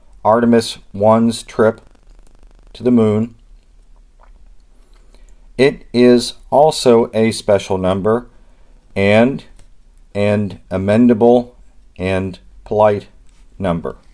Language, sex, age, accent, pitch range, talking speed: English, male, 50-69, American, 95-120 Hz, 75 wpm